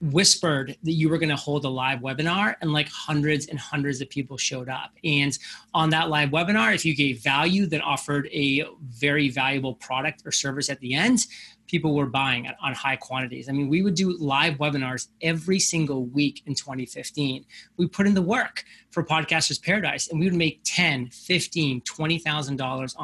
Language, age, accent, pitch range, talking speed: English, 30-49, American, 140-165 Hz, 190 wpm